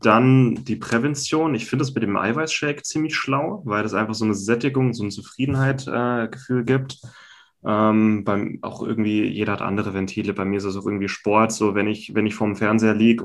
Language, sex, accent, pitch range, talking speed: German, male, German, 100-120 Hz, 210 wpm